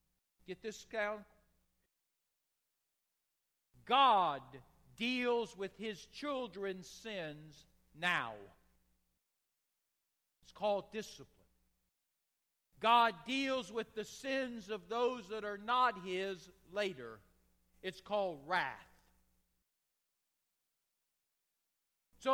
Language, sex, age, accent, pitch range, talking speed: English, male, 50-69, American, 145-245 Hz, 80 wpm